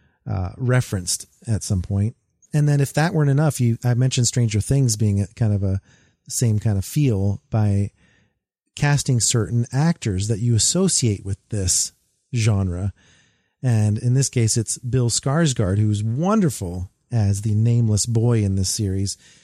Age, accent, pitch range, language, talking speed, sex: 40-59, American, 105-125 Hz, English, 155 wpm, male